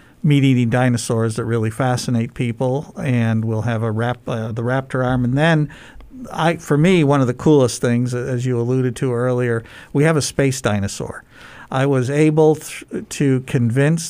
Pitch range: 120-135 Hz